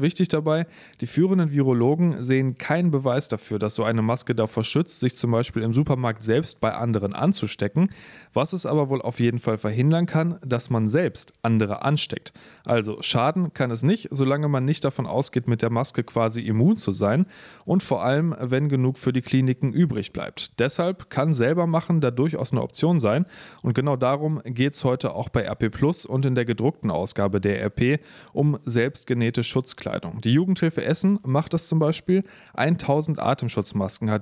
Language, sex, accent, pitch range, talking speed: German, male, German, 120-155 Hz, 180 wpm